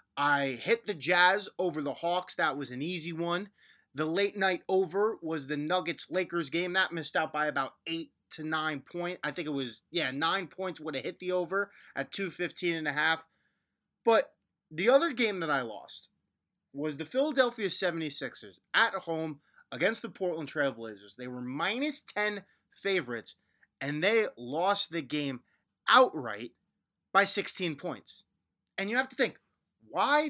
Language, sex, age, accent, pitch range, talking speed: English, male, 20-39, American, 150-205 Hz, 165 wpm